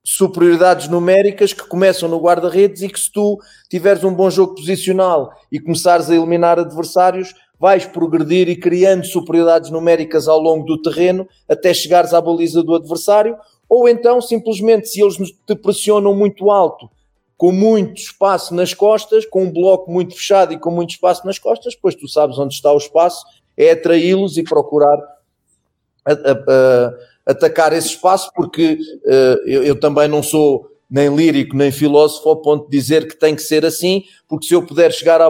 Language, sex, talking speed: Portuguese, male, 175 wpm